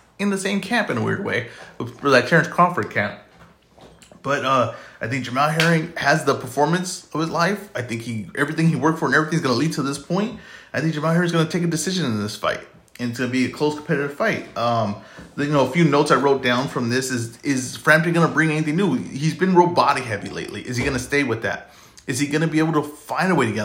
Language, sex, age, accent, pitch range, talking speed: English, male, 30-49, American, 125-170 Hz, 270 wpm